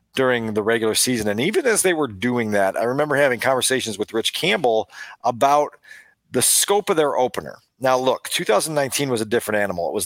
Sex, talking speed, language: male, 195 wpm, English